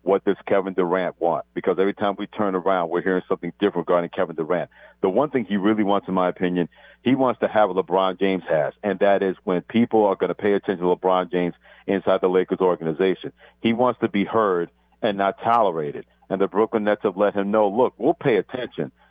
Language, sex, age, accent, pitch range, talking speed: English, male, 50-69, American, 95-110 Hz, 225 wpm